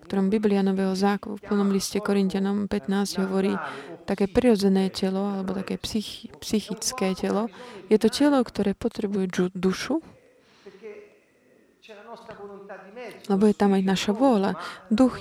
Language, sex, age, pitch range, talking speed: Slovak, female, 20-39, 180-215 Hz, 120 wpm